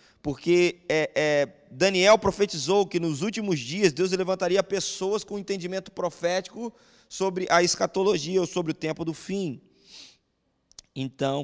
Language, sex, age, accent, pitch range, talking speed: Portuguese, male, 20-39, Brazilian, 130-180 Hz, 130 wpm